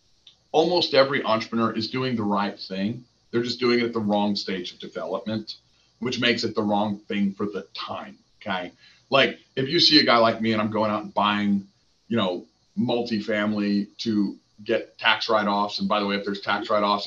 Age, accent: 40-59, American